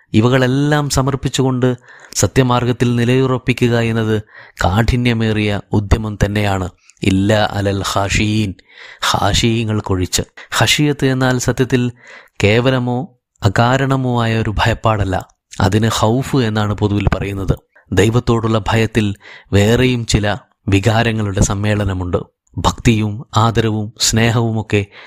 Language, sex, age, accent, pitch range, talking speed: Malayalam, male, 30-49, native, 105-125 Hz, 85 wpm